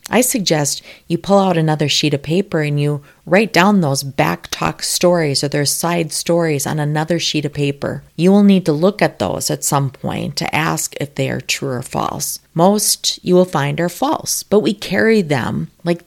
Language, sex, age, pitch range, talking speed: English, female, 40-59, 130-170 Hz, 200 wpm